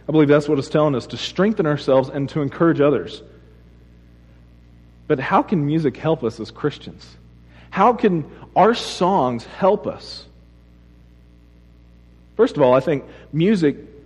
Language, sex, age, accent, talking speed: English, male, 40-59, American, 145 wpm